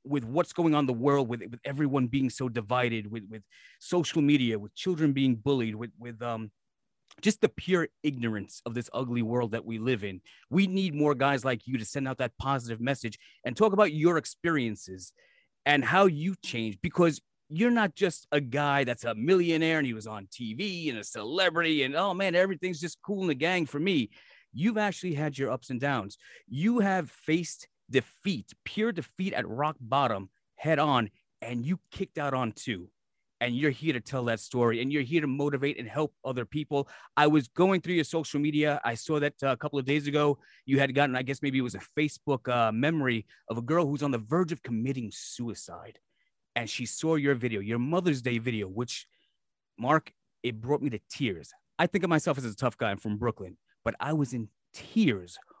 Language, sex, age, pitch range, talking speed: English, male, 30-49, 120-160 Hz, 210 wpm